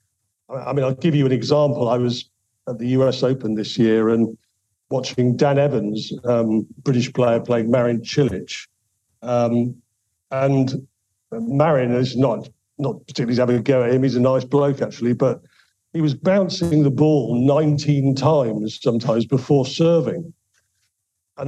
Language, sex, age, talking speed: English, male, 50-69, 150 wpm